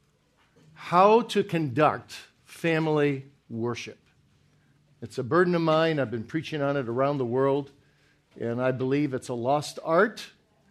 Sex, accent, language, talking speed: male, American, English, 140 wpm